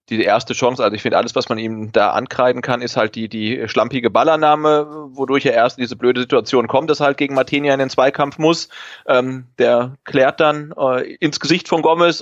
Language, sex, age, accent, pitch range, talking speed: German, male, 30-49, German, 105-135 Hz, 220 wpm